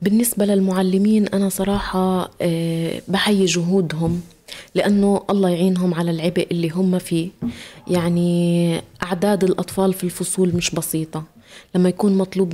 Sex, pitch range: female, 175-215 Hz